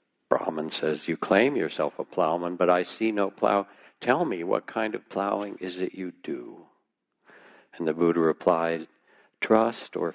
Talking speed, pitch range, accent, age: 165 wpm, 85-95 Hz, American, 60-79